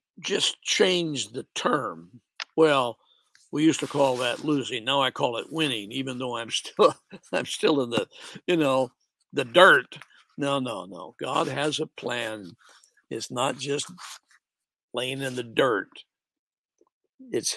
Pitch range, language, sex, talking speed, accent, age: 140-190 Hz, English, male, 145 wpm, American, 60-79